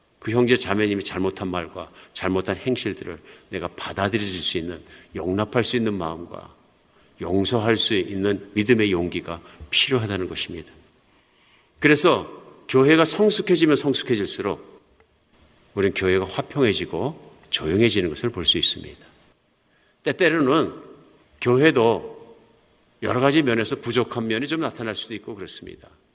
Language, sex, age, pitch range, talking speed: English, male, 50-69, 100-155 Hz, 105 wpm